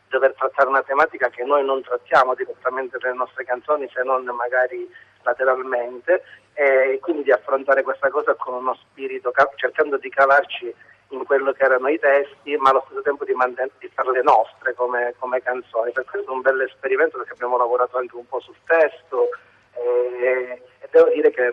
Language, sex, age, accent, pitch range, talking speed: Italian, male, 30-49, native, 125-180 Hz, 185 wpm